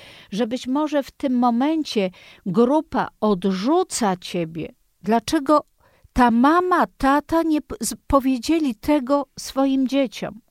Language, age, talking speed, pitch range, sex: Polish, 50-69, 105 wpm, 220-305 Hz, female